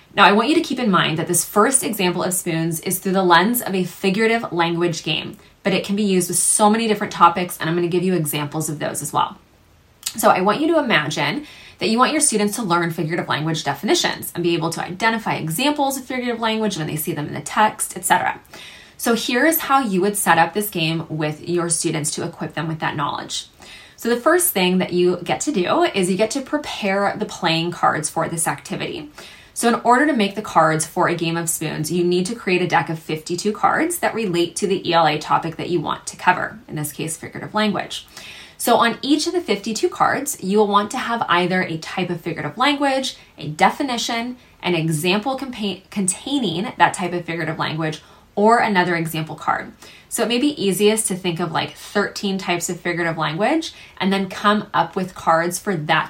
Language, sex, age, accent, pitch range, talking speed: English, female, 20-39, American, 165-220 Hz, 220 wpm